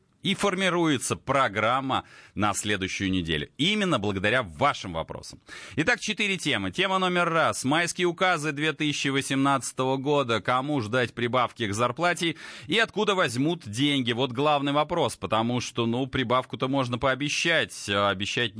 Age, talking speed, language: 30-49, 125 wpm, Russian